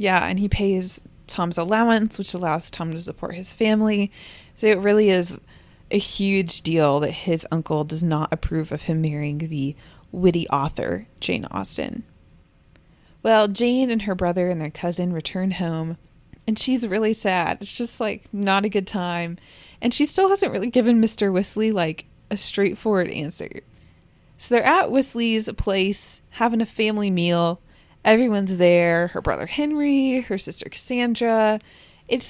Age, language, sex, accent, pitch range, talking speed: 20-39, English, female, American, 175-230 Hz, 160 wpm